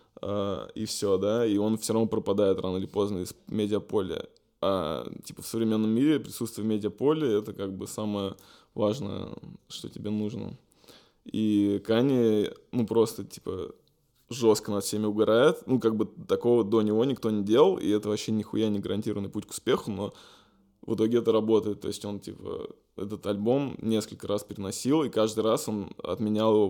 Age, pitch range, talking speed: 20-39, 105-115 Hz, 175 wpm